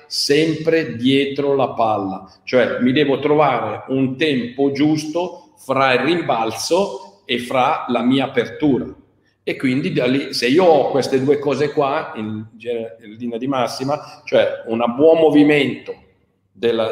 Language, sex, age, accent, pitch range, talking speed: Italian, male, 50-69, native, 115-160 Hz, 140 wpm